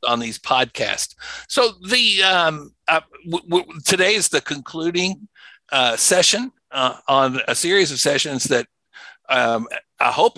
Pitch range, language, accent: 120-160 Hz, English, American